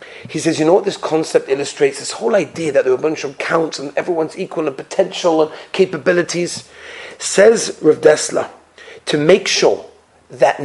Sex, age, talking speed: male, 40-59, 180 wpm